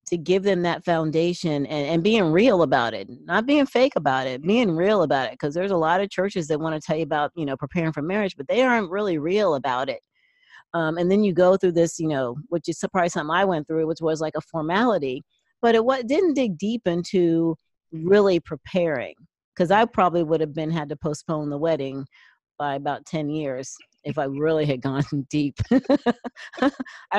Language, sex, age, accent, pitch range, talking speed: English, female, 40-59, American, 160-215 Hz, 210 wpm